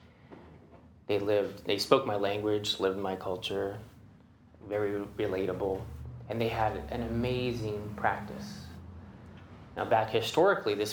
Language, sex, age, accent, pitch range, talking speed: English, male, 20-39, American, 100-120 Hz, 115 wpm